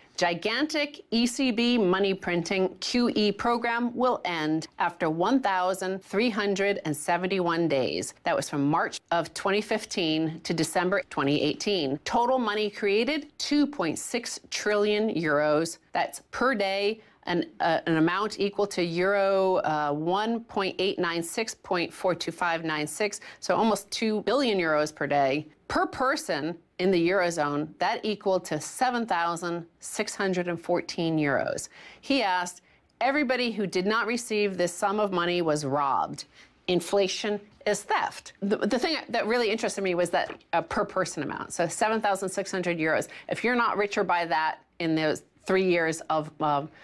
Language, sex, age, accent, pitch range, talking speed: English, female, 40-59, American, 165-210 Hz, 125 wpm